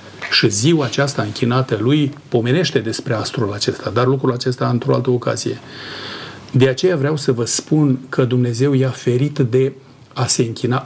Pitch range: 125-145 Hz